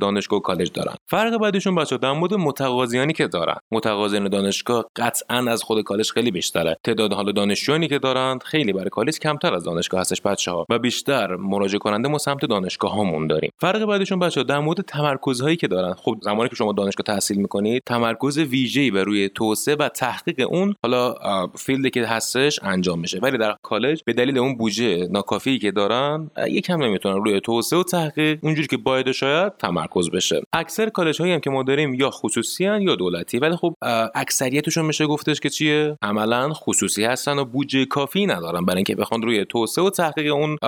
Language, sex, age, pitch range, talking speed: Persian, male, 30-49, 105-150 Hz, 185 wpm